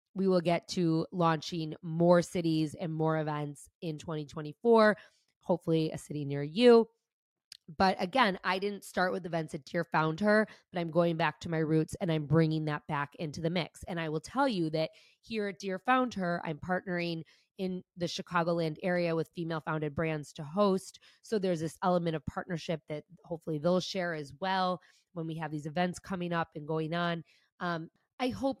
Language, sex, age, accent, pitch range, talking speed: English, female, 20-39, American, 160-190 Hz, 190 wpm